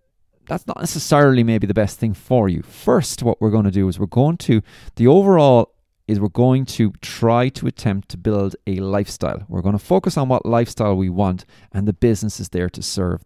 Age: 30-49